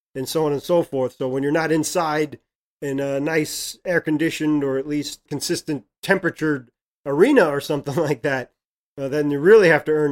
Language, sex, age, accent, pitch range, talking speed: English, male, 30-49, American, 140-170 Hz, 185 wpm